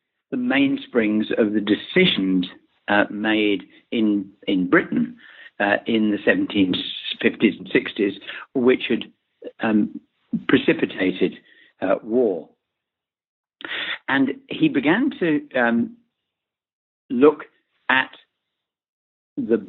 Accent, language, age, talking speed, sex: British, English, 60-79, 90 wpm, male